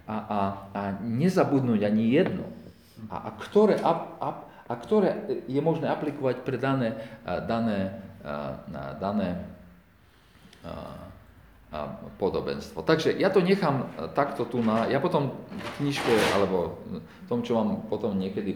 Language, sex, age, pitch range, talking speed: Slovak, male, 40-59, 85-120 Hz, 115 wpm